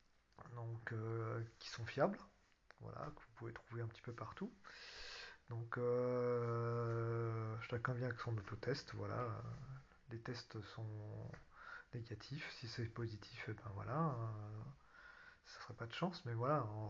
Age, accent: 40-59, French